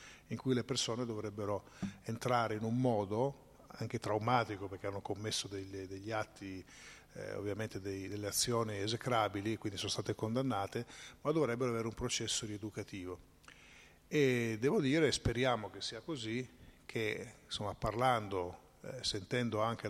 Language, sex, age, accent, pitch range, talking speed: Italian, male, 50-69, native, 105-125 Hz, 140 wpm